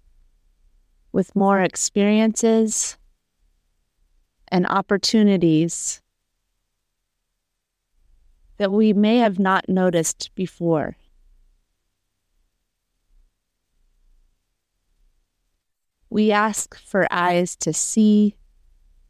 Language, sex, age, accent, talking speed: English, female, 30-49, American, 55 wpm